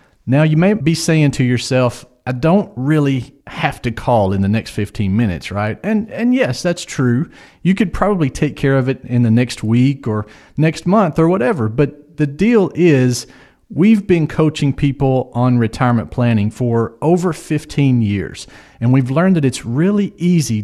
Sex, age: male, 40-59